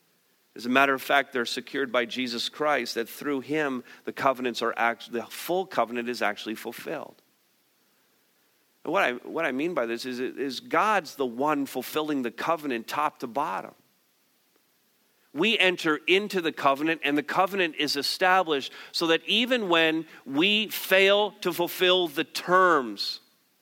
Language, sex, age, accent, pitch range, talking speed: English, male, 50-69, American, 120-150 Hz, 160 wpm